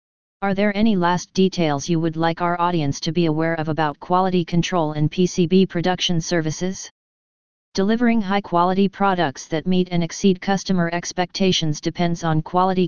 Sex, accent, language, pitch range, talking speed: female, American, English, 165-185 Hz, 155 wpm